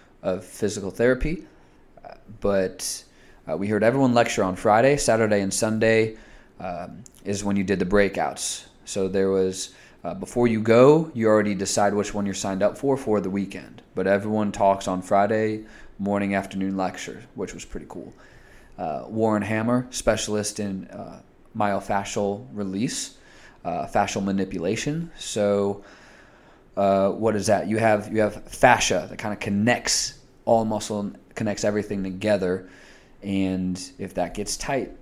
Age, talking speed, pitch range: 20-39, 155 wpm, 95-110 Hz